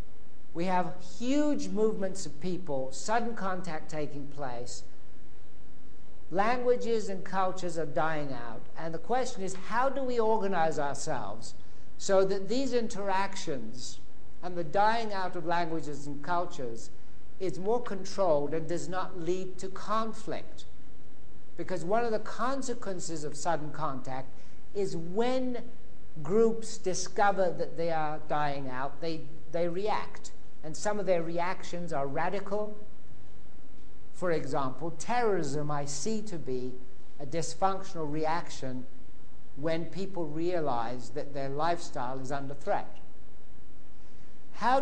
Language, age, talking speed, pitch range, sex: English, 60-79, 125 wpm, 145-195 Hz, male